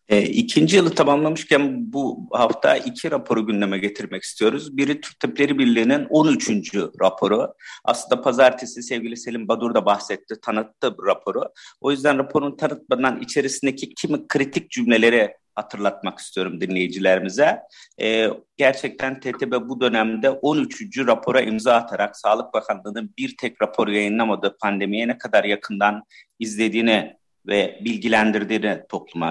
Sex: male